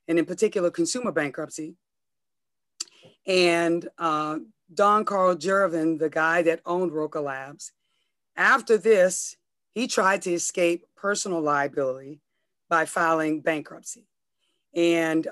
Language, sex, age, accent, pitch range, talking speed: English, female, 40-59, American, 160-195 Hz, 110 wpm